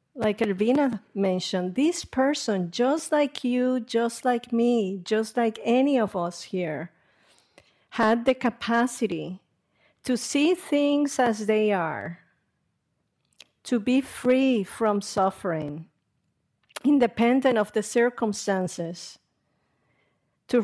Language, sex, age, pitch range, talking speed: English, female, 50-69, 195-250 Hz, 105 wpm